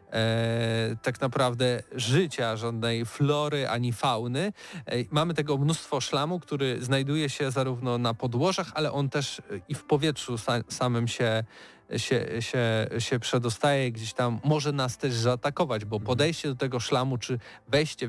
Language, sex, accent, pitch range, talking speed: Polish, male, native, 120-145 Hz, 135 wpm